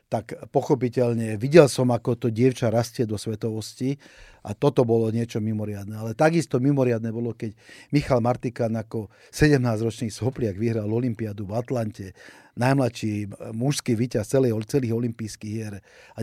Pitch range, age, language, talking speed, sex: 110-130 Hz, 40-59, Slovak, 135 wpm, male